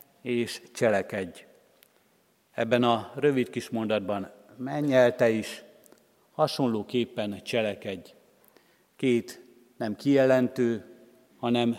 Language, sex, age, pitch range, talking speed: Hungarian, male, 50-69, 115-135 Hz, 75 wpm